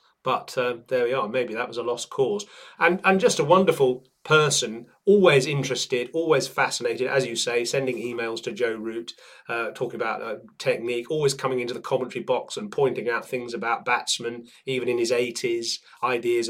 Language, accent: English, British